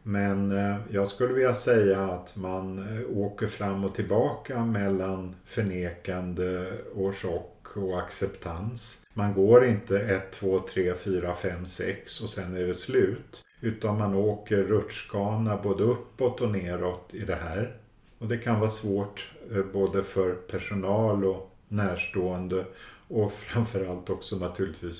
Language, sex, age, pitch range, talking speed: Swedish, male, 50-69, 95-110 Hz, 135 wpm